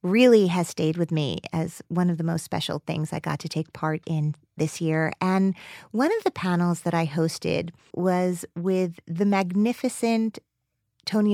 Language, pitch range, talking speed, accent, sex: English, 165-205 Hz, 175 wpm, American, female